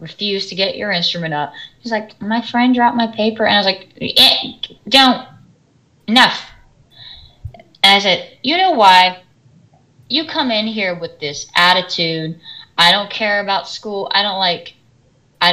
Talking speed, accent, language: 160 wpm, American, English